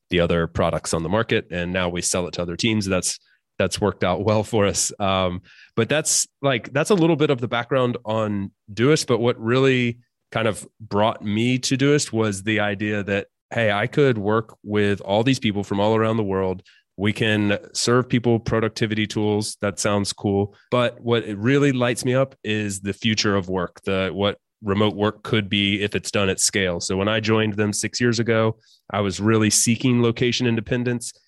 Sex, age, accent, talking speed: male, 30-49, American, 200 wpm